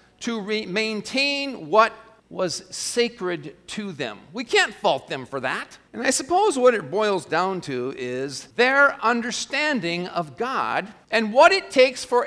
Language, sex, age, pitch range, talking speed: English, male, 50-69, 175-285 Hz, 150 wpm